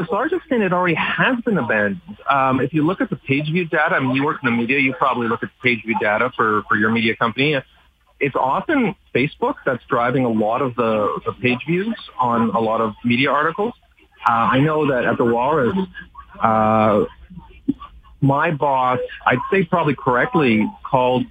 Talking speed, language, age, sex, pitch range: 195 wpm, English, 40-59, male, 115-165 Hz